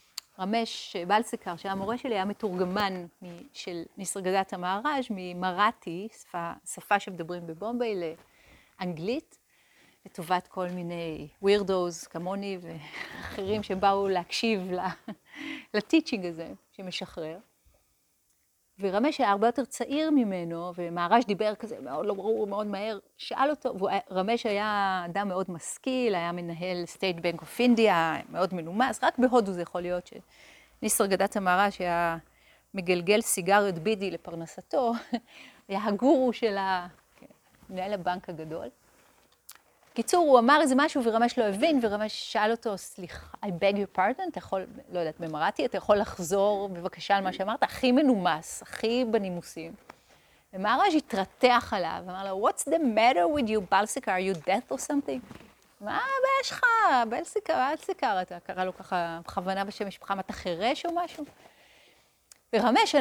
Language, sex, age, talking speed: Hebrew, female, 40-59, 135 wpm